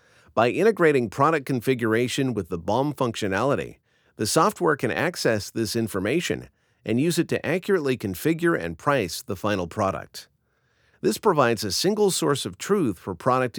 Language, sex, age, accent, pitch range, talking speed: English, male, 50-69, American, 105-140 Hz, 150 wpm